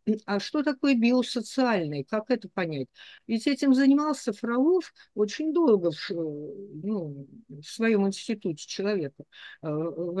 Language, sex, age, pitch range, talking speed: Russian, female, 50-69, 175-240 Hz, 120 wpm